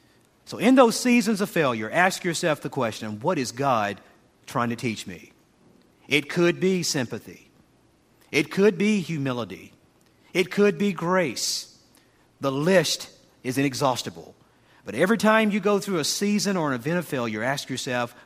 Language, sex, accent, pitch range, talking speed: English, male, American, 130-210 Hz, 160 wpm